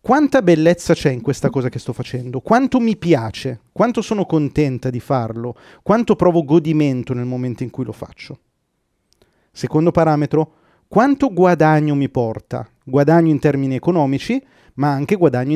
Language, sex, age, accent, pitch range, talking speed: Italian, male, 30-49, native, 135-170 Hz, 150 wpm